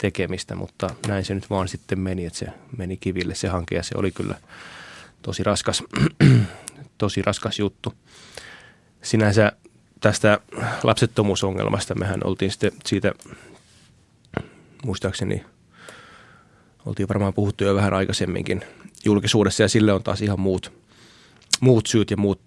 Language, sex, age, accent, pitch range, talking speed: Finnish, male, 20-39, native, 95-105 Hz, 125 wpm